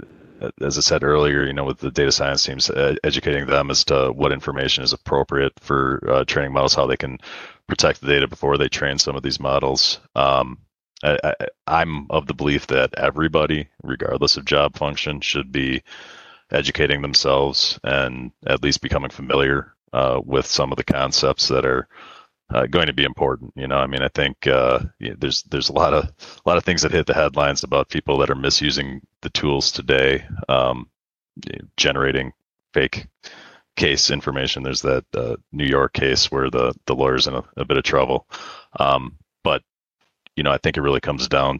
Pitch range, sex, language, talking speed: 65-70 Hz, male, English, 190 wpm